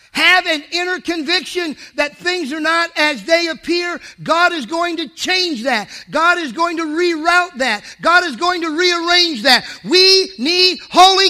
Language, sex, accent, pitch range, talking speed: English, male, American, 200-320 Hz, 170 wpm